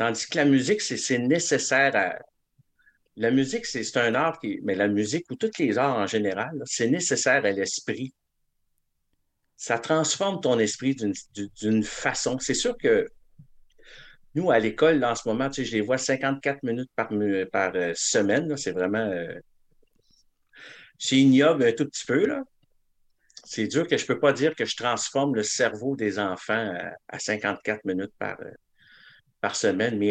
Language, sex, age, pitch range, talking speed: French, male, 60-79, 105-145 Hz, 180 wpm